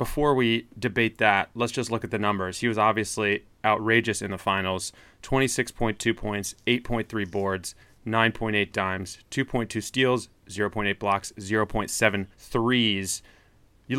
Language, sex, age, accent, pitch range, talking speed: English, male, 30-49, American, 100-125 Hz, 130 wpm